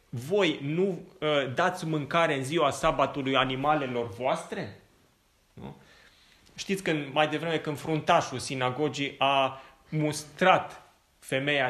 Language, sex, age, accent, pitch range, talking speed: Romanian, male, 20-39, native, 135-180 Hz, 110 wpm